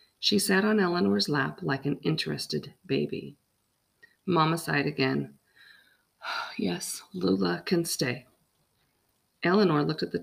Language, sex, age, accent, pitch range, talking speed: English, female, 40-59, American, 135-180 Hz, 115 wpm